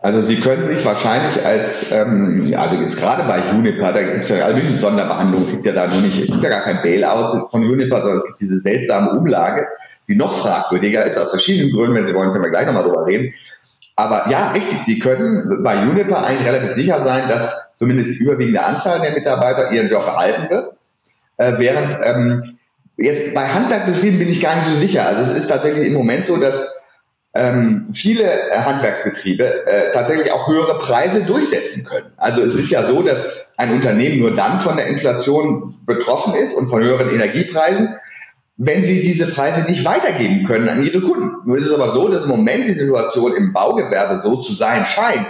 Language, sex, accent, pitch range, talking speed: German, male, German, 125-200 Hz, 195 wpm